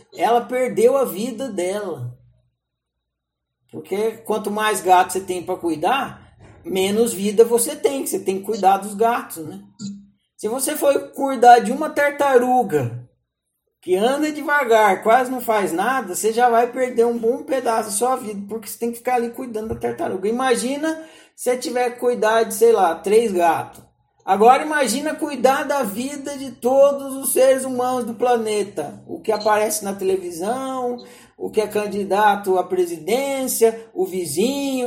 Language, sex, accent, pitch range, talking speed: Portuguese, male, Brazilian, 210-290 Hz, 160 wpm